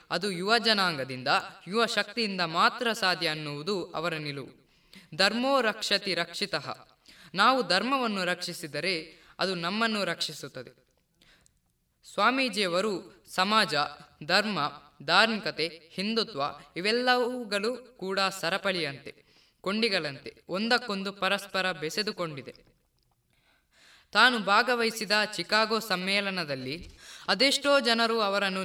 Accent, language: native, Kannada